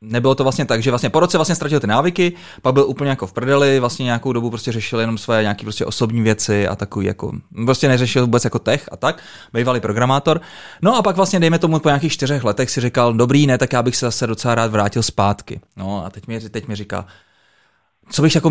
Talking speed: 240 wpm